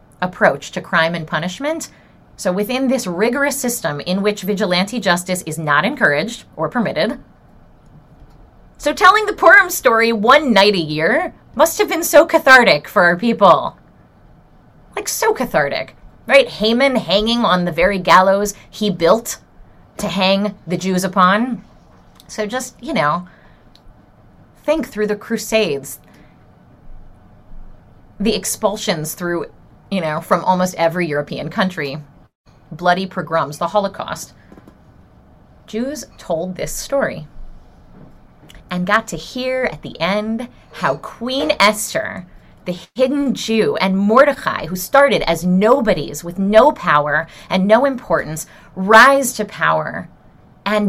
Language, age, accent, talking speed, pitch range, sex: English, 30-49, American, 125 wpm, 175-240 Hz, female